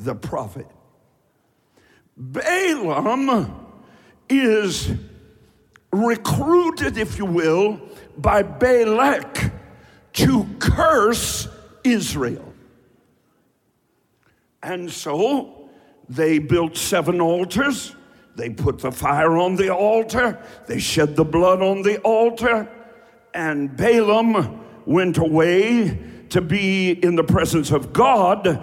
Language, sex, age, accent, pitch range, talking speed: English, male, 60-79, American, 170-235 Hz, 90 wpm